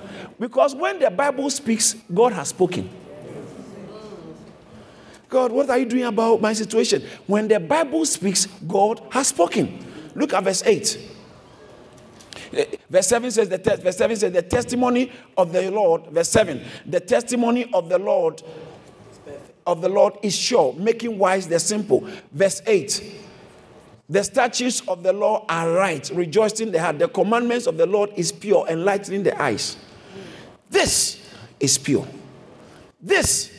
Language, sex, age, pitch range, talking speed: English, male, 50-69, 190-255 Hz, 145 wpm